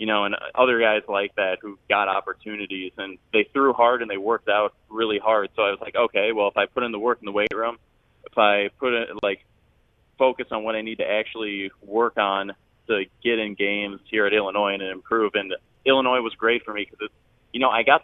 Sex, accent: male, American